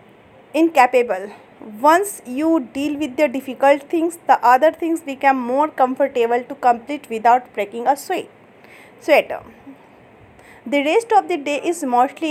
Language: Hindi